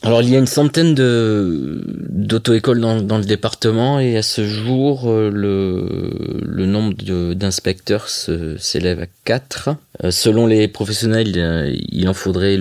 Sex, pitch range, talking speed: male, 85-105 Hz, 150 wpm